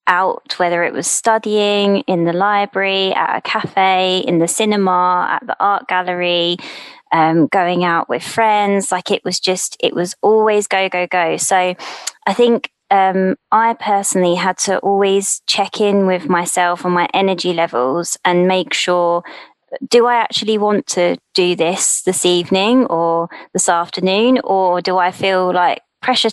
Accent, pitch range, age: British, 180-205 Hz, 20-39